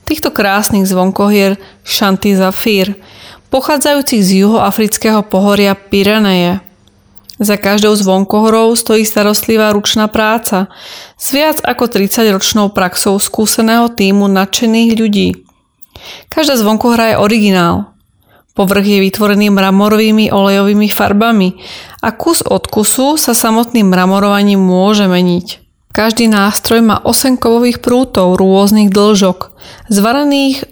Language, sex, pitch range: Slovak, female, 195-225 Hz